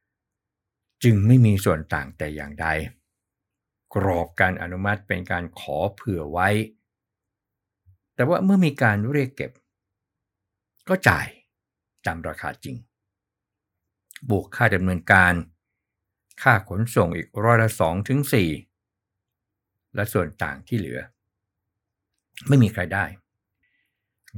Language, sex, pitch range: Thai, male, 90-115 Hz